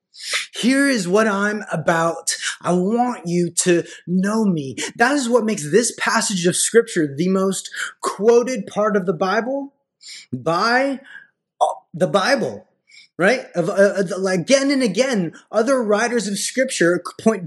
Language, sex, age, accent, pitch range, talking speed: English, male, 20-39, American, 150-210 Hz, 130 wpm